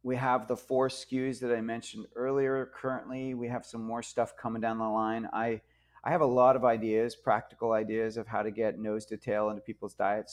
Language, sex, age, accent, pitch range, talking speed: English, male, 30-49, American, 105-120 Hz, 220 wpm